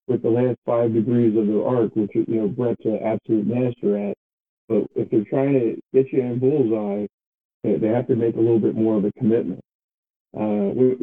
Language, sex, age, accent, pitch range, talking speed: English, male, 50-69, American, 110-135 Hz, 205 wpm